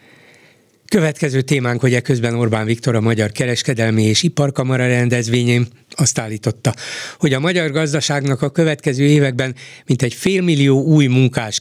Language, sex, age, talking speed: Hungarian, male, 60-79, 145 wpm